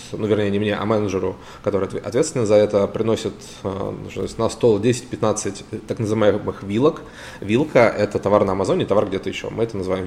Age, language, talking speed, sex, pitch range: 20-39, Russian, 180 wpm, male, 100-120 Hz